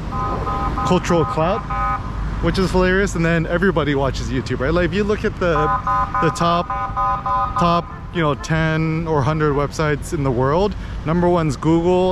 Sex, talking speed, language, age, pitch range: male, 160 wpm, English, 20-39, 115-160 Hz